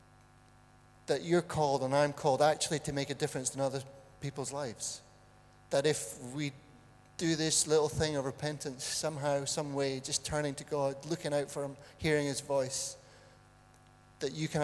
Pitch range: 125-150 Hz